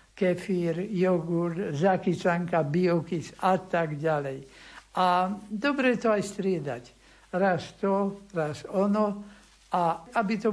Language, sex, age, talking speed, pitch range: Slovak, male, 60-79, 110 wpm, 165-200 Hz